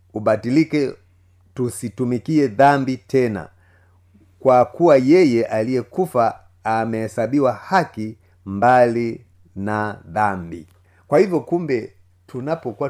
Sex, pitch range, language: male, 100-130 Hz, Swahili